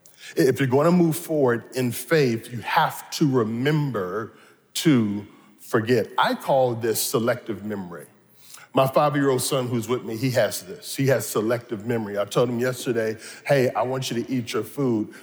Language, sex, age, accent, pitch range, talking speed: English, male, 40-59, American, 120-155 Hz, 175 wpm